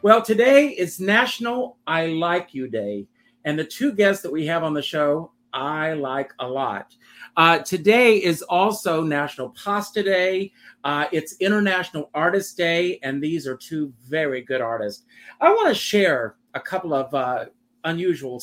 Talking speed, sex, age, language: 160 wpm, male, 50-69, English